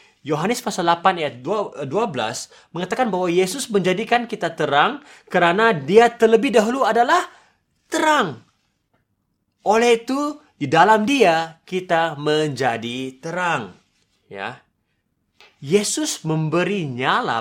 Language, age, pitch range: Indonesian, 30-49, 155-230 Hz